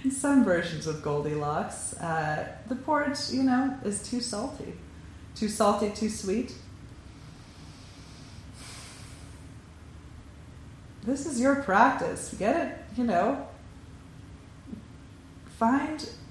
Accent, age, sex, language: American, 30-49, female, English